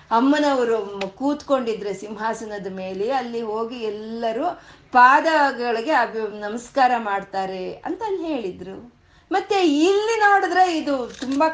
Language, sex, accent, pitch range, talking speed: Kannada, female, native, 220-290 Hz, 95 wpm